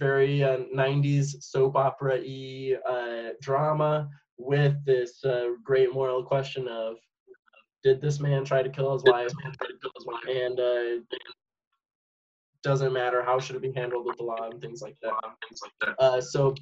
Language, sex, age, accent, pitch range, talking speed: English, male, 20-39, American, 130-150 Hz, 150 wpm